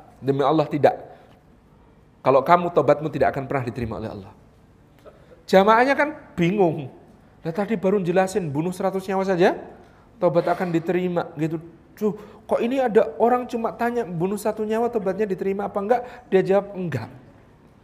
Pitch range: 155-215 Hz